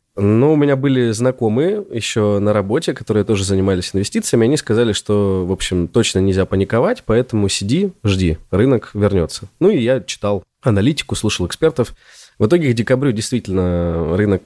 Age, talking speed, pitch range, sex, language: 20-39, 160 wpm, 95-120 Hz, male, Russian